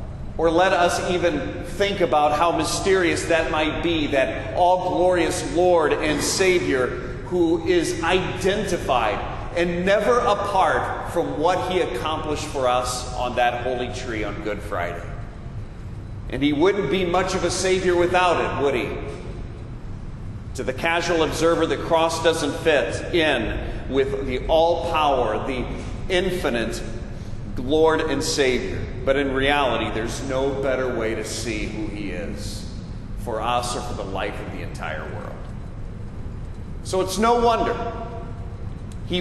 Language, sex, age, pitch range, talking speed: English, male, 40-59, 115-180 Hz, 140 wpm